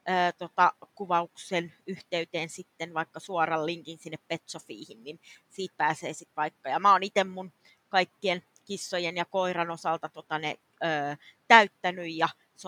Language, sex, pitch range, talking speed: Finnish, female, 170-205 Hz, 140 wpm